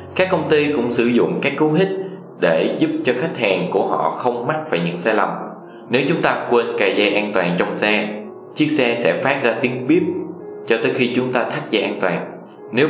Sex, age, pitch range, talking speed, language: male, 20-39, 105-130 Hz, 230 wpm, Vietnamese